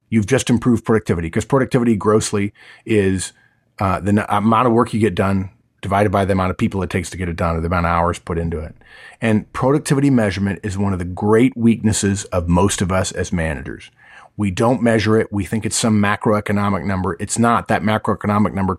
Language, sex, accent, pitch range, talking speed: English, male, American, 100-115 Hz, 210 wpm